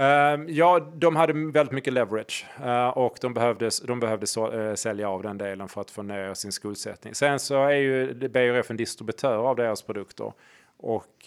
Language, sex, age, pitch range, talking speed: Swedish, male, 20-39, 105-125 Hz, 180 wpm